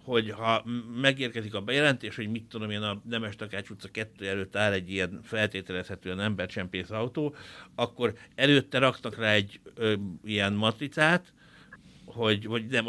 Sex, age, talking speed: male, 60-79, 135 wpm